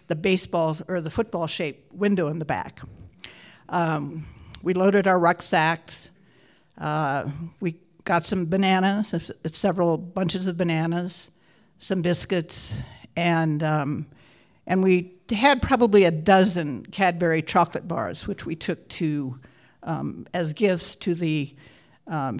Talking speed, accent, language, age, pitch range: 125 wpm, American, English, 60-79, 160-190 Hz